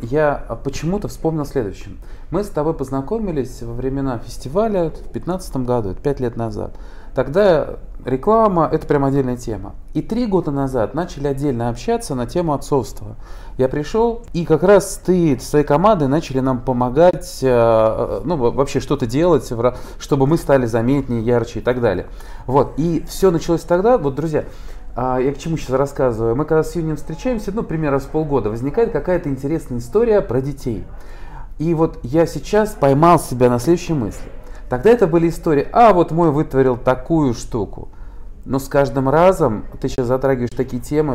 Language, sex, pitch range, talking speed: Russian, male, 120-160 Hz, 165 wpm